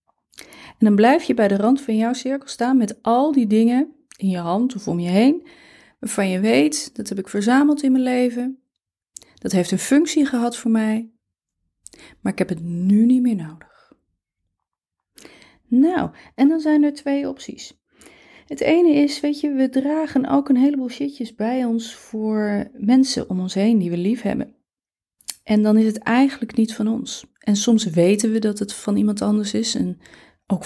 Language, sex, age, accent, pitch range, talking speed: Dutch, female, 30-49, Dutch, 205-255 Hz, 190 wpm